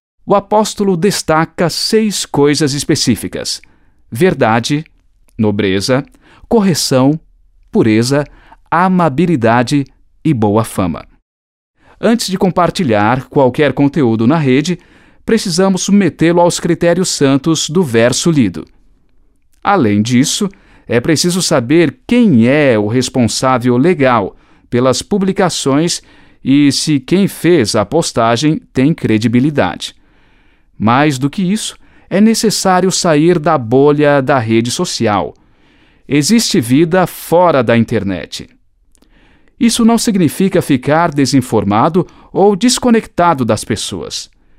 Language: Portuguese